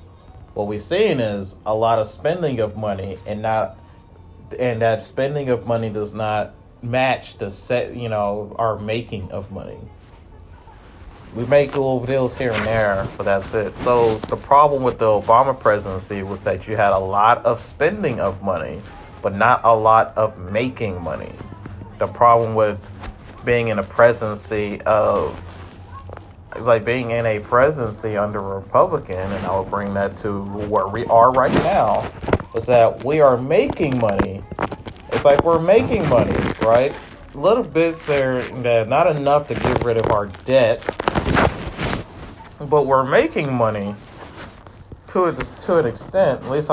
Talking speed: 160 wpm